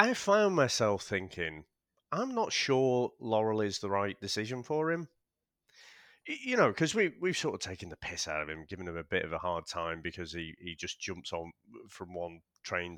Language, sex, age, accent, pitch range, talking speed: English, male, 30-49, British, 95-140 Hz, 205 wpm